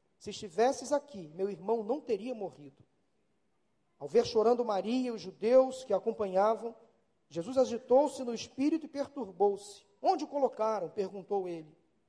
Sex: male